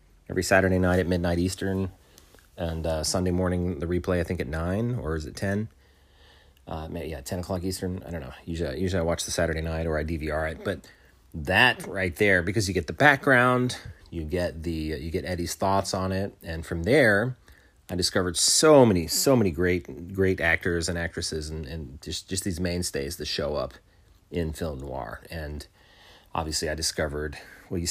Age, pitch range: 30-49, 80-100 Hz